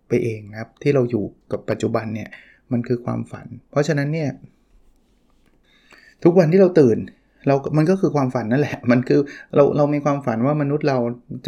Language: Thai